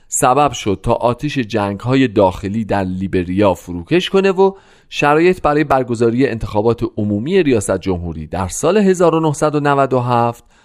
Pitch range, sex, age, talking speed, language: 100-150 Hz, male, 40-59, 120 wpm, Persian